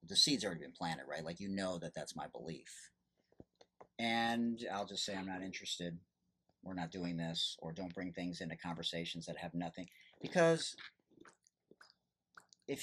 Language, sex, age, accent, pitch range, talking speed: English, male, 40-59, American, 90-115 Hz, 165 wpm